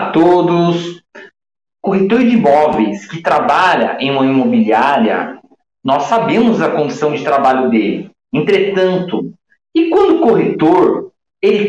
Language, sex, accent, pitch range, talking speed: Portuguese, male, Brazilian, 160-240 Hz, 120 wpm